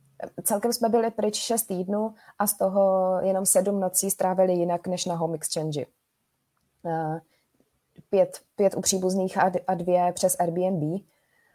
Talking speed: 130 wpm